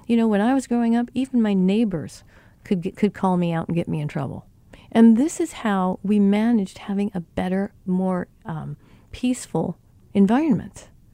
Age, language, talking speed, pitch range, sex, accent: 40-59, English, 185 wpm, 180-235 Hz, female, American